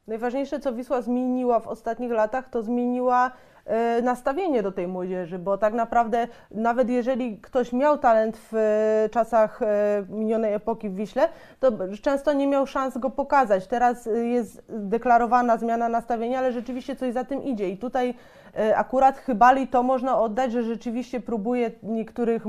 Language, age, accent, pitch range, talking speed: Polish, 20-39, native, 215-250 Hz, 150 wpm